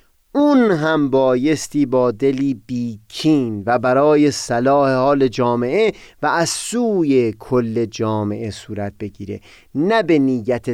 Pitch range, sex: 120-185 Hz, male